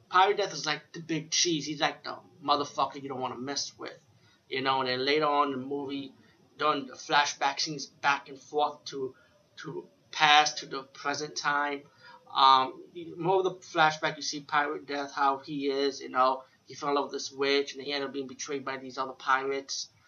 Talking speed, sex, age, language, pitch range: 210 wpm, male, 30-49, English, 135-150 Hz